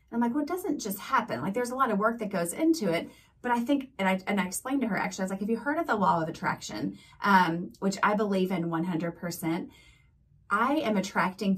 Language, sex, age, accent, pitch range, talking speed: English, female, 30-49, American, 175-225 Hz, 250 wpm